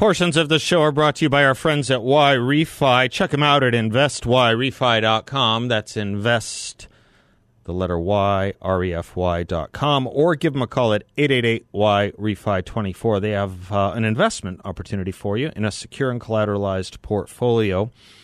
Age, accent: 40-59, American